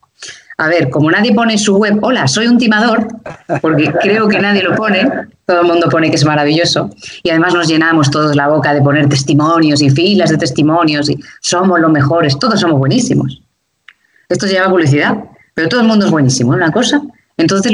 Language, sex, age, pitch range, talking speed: Spanish, female, 20-39, 140-205 Hz, 200 wpm